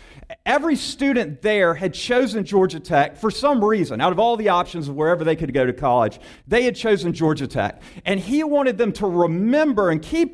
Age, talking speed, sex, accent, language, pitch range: 50-69, 205 wpm, male, American, English, 160-230 Hz